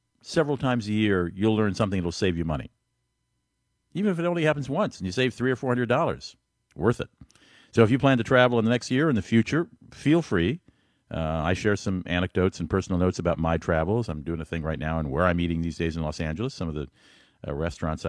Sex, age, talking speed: male, 50-69, 240 wpm